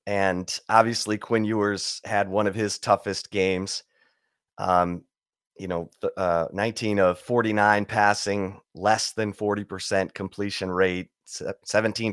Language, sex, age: English, male, 30-49